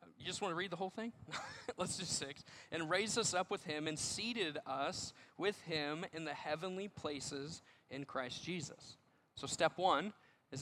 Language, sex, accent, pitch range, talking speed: English, male, American, 140-175 Hz, 185 wpm